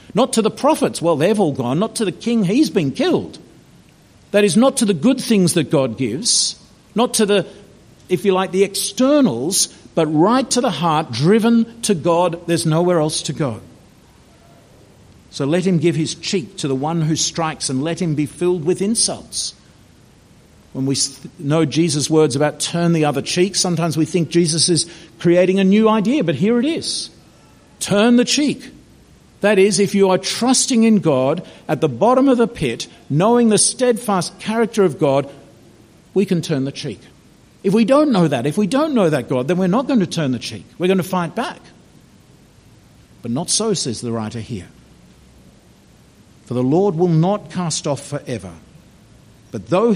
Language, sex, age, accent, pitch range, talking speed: English, male, 50-69, Australian, 145-205 Hz, 185 wpm